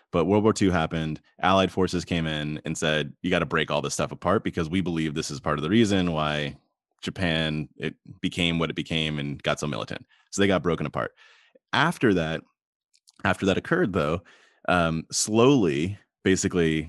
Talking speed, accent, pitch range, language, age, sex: 185 wpm, American, 80-100 Hz, English, 20-39, male